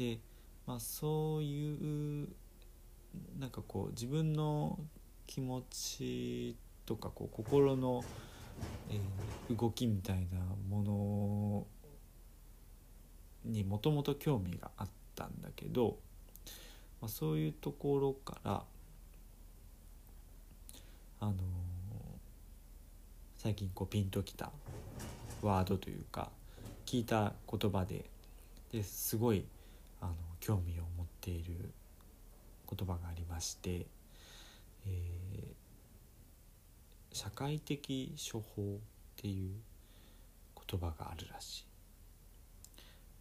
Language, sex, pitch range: Japanese, male, 90-120 Hz